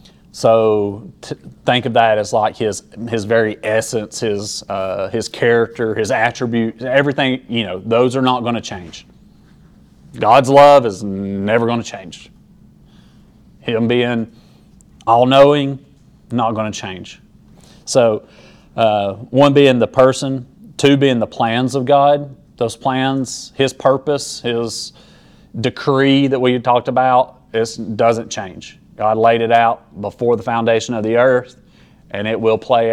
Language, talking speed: English, 145 wpm